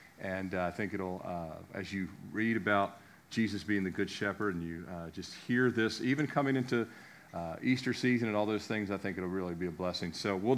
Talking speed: 225 wpm